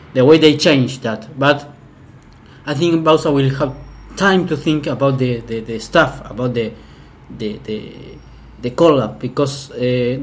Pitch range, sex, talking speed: 130-155 Hz, male, 165 wpm